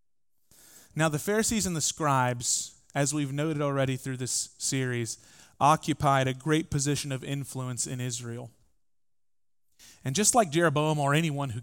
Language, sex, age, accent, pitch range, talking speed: English, male, 30-49, American, 130-170 Hz, 145 wpm